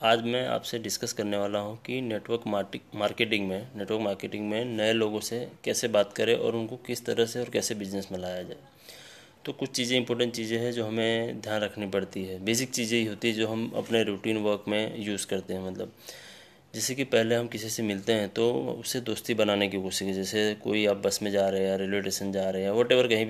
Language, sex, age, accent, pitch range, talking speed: Hindi, male, 30-49, native, 105-115 Hz, 220 wpm